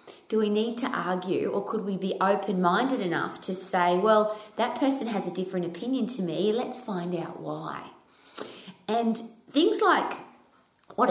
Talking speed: 160 wpm